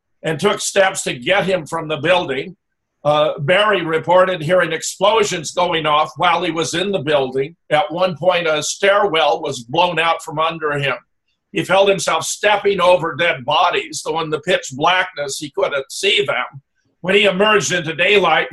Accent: American